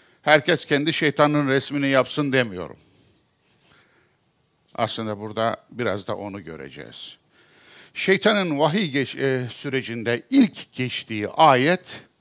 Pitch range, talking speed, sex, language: 115-160 Hz, 95 wpm, male, Turkish